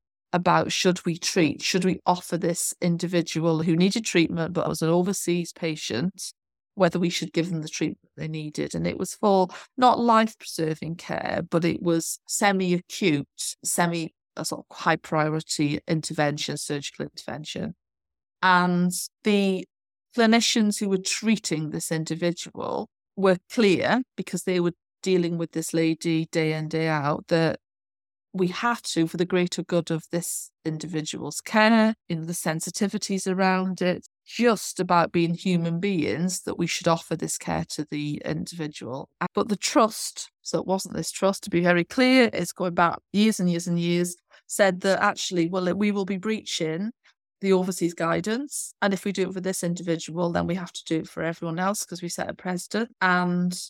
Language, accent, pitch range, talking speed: English, British, 165-190 Hz, 170 wpm